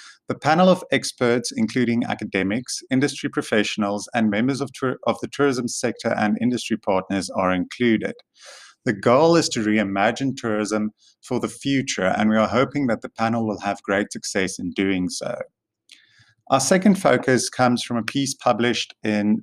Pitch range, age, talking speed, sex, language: 105-135 Hz, 30-49, 160 wpm, male, English